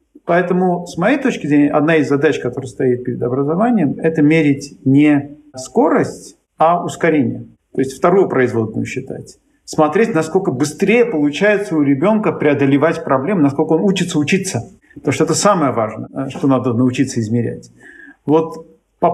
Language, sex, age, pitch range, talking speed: Russian, male, 50-69, 130-165 Hz, 145 wpm